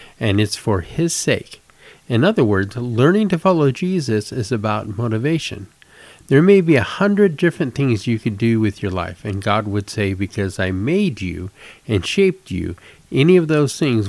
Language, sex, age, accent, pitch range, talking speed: English, male, 50-69, American, 105-145 Hz, 185 wpm